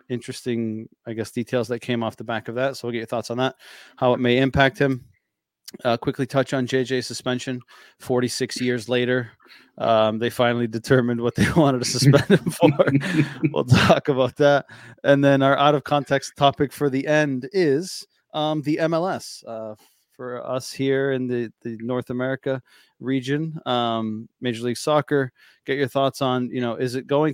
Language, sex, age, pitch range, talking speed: English, male, 20-39, 115-140 Hz, 185 wpm